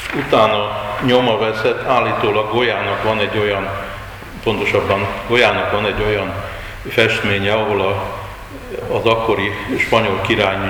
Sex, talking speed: male, 105 wpm